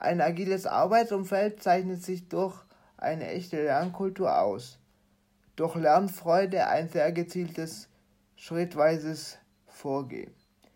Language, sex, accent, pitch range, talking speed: German, male, German, 150-185 Hz, 95 wpm